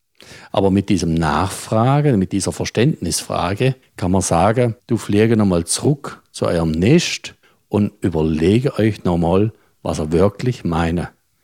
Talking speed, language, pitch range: 130 wpm, German, 85-110 Hz